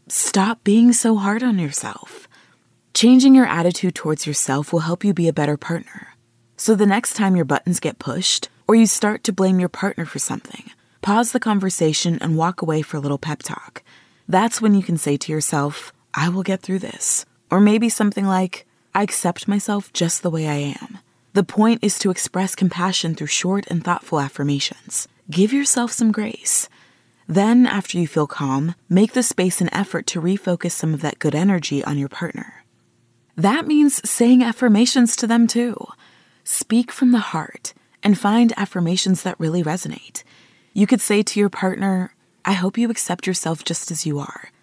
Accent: American